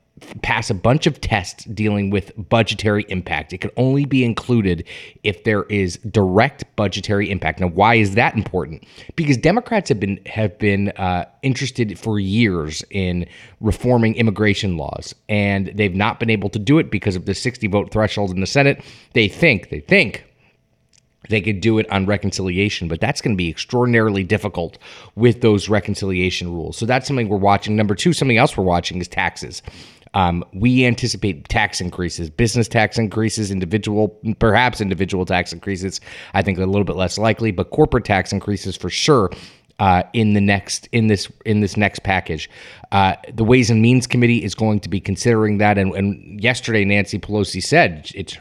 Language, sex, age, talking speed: English, male, 30-49, 180 wpm